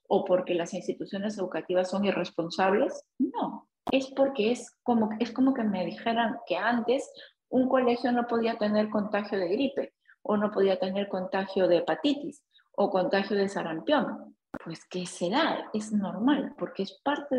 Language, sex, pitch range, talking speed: Spanish, female, 180-250 Hz, 160 wpm